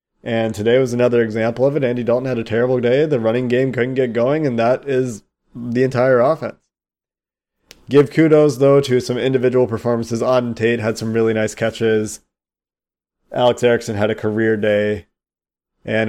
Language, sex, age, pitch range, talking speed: English, male, 20-39, 110-125 Hz, 170 wpm